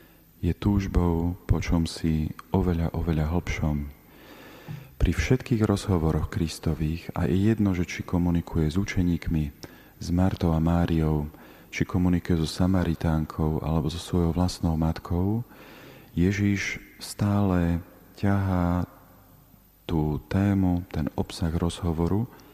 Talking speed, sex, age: 110 wpm, male, 40-59